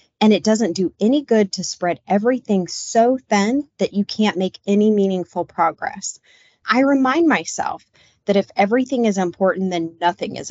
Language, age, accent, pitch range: English, 30-49, American, 170-220 Hz